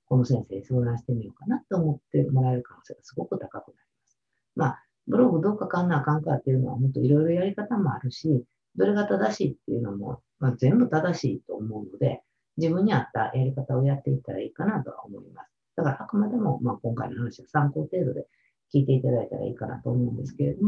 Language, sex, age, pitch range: Japanese, female, 50-69, 125-165 Hz